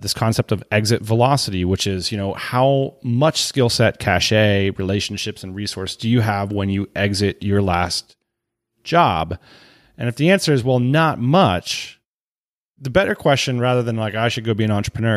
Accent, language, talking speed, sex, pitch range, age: American, English, 180 wpm, male, 100-130 Hz, 30-49